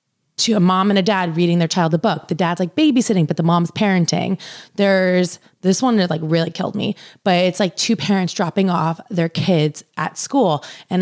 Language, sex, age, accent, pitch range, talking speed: English, female, 20-39, American, 170-220 Hz, 210 wpm